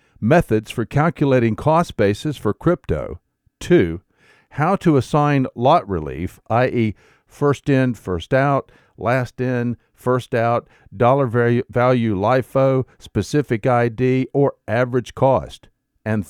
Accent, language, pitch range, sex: American, English, 115-150 Hz, male